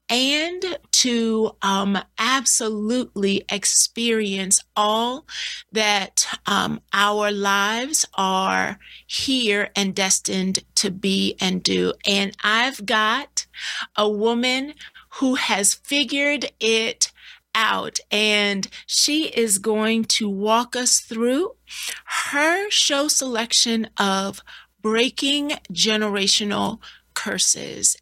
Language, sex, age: English, female, 40-59